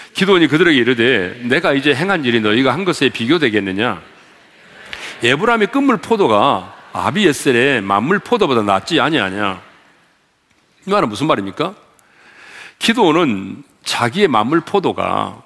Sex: male